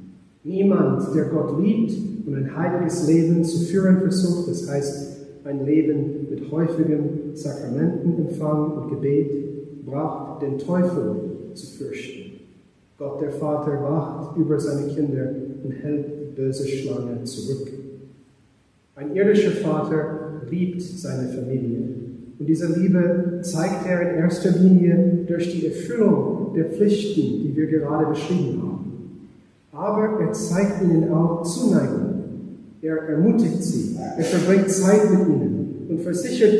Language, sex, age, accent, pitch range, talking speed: English, male, 40-59, German, 140-175 Hz, 130 wpm